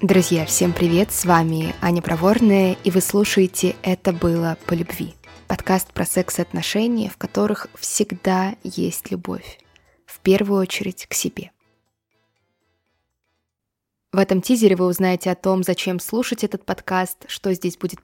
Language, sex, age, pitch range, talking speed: Russian, female, 20-39, 175-210 Hz, 145 wpm